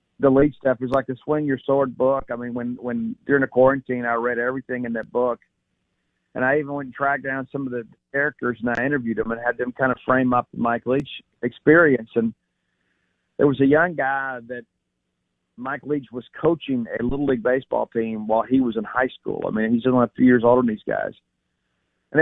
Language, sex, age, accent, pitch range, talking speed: English, male, 50-69, American, 120-135 Hz, 220 wpm